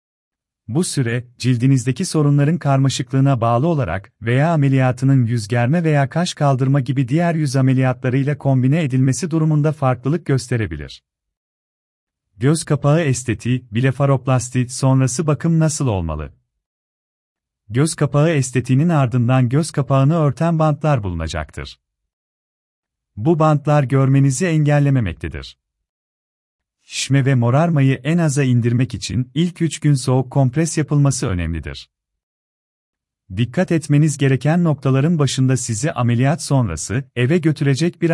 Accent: native